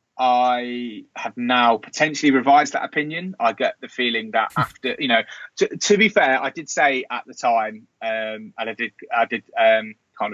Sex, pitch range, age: male, 110-150 Hz, 20-39